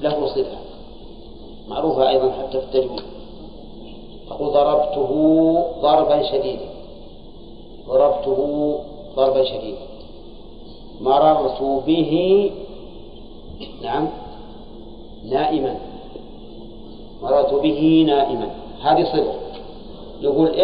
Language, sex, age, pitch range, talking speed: Arabic, male, 50-69, 135-175 Hz, 65 wpm